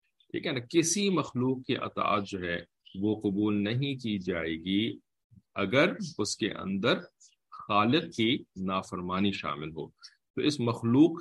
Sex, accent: male, Indian